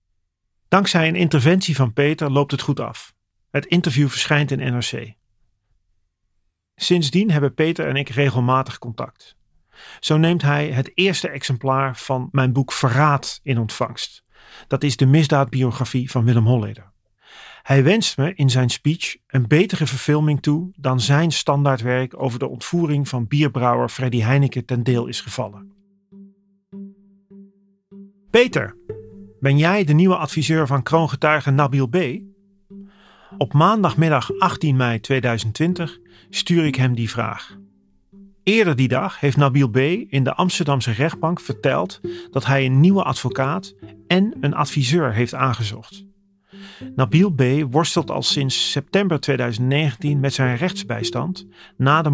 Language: Dutch